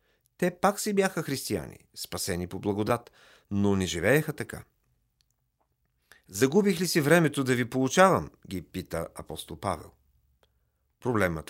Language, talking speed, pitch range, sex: Bulgarian, 125 wpm, 95-135 Hz, male